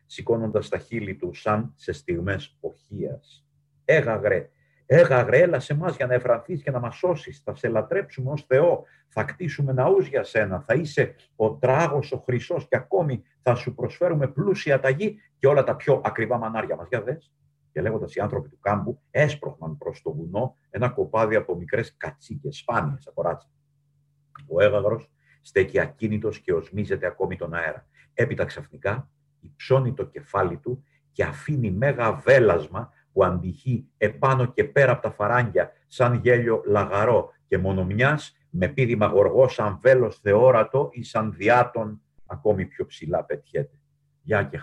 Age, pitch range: 50-69, 120-150 Hz